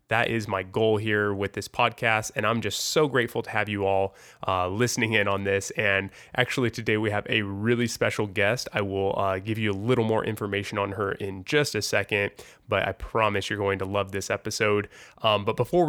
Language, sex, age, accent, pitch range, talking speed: English, male, 20-39, American, 105-130 Hz, 220 wpm